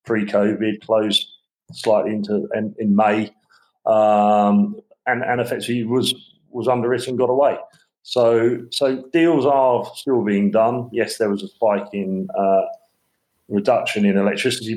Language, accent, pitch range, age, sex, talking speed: English, British, 105-120 Hz, 40-59, male, 140 wpm